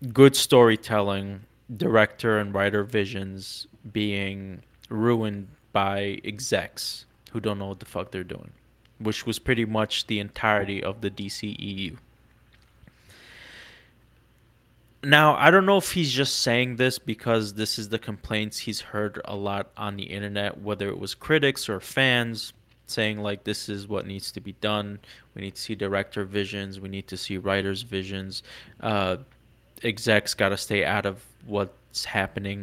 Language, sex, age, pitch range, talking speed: English, male, 20-39, 100-115 Hz, 155 wpm